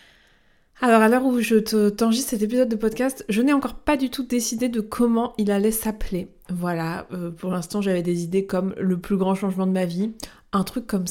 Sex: female